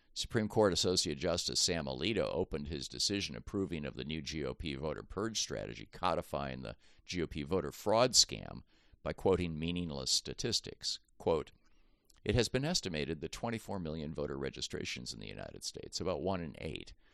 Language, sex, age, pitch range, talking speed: English, male, 50-69, 70-90 Hz, 160 wpm